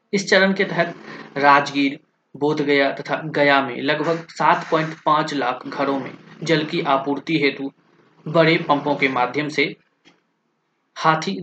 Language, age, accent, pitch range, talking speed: Hindi, 20-39, native, 140-170 Hz, 130 wpm